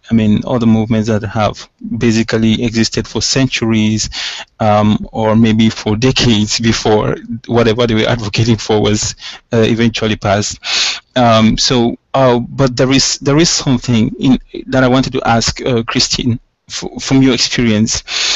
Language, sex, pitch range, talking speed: English, male, 110-130 Hz, 155 wpm